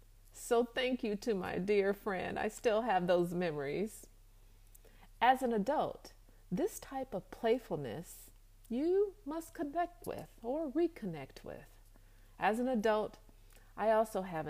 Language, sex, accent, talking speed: English, female, American, 130 wpm